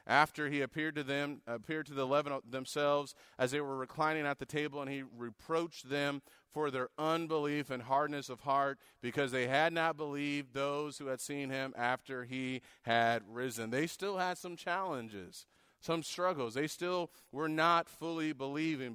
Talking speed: 175 wpm